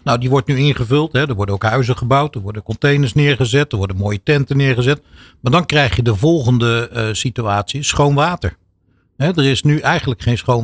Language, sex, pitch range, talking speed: Dutch, male, 115-140 Hz, 210 wpm